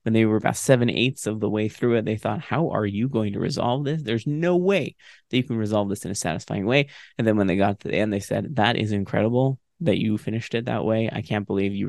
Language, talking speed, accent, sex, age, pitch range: English, 280 wpm, American, male, 20-39, 100-140 Hz